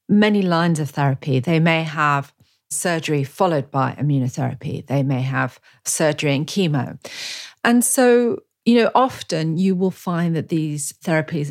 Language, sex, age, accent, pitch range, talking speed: English, female, 40-59, British, 140-195 Hz, 145 wpm